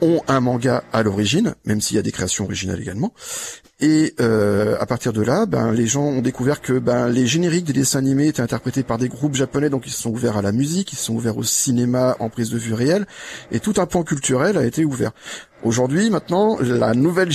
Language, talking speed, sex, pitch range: French, 235 wpm, male, 125-155 Hz